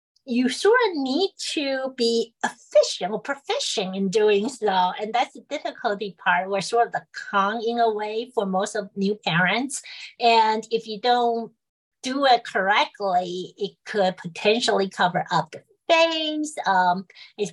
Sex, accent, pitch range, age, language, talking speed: female, American, 190-240 Hz, 40-59, English, 155 wpm